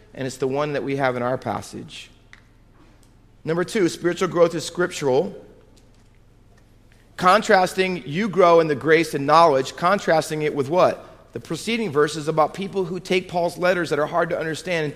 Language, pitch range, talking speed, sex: English, 130-200 Hz, 175 wpm, male